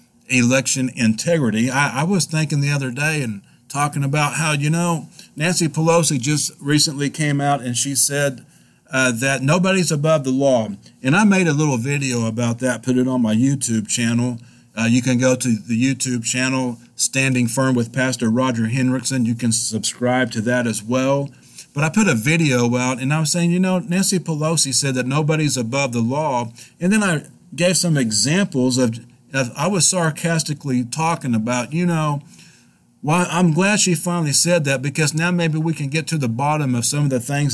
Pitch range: 125-160 Hz